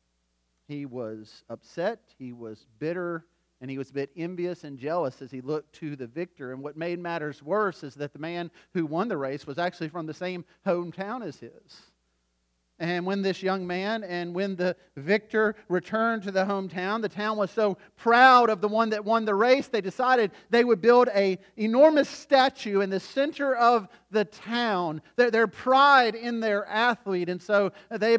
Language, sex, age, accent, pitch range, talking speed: English, male, 40-59, American, 165-230 Hz, 190 wpm